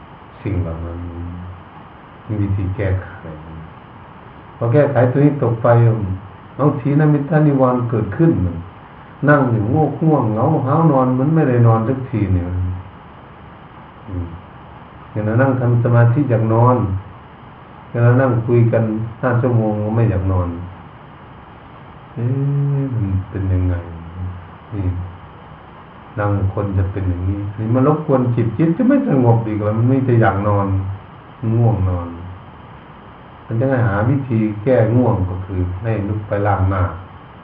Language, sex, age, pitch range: Thai, male, 60-79, 95-130 Hz